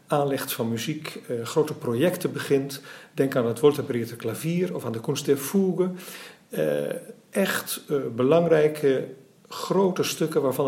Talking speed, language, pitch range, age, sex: 140 wpm, English, 130-170 Hz, 50-69, male